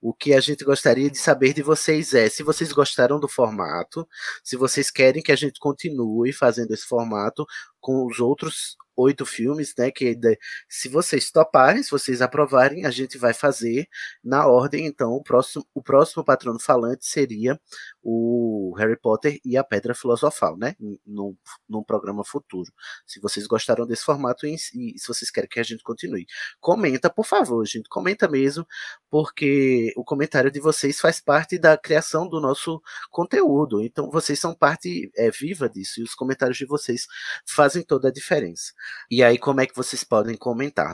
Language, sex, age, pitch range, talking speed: Portuguese, male, 20-39, 115-145 Hz, 180 wpm